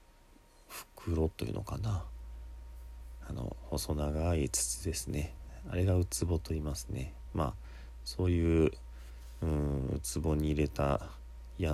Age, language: 40-59, Japanese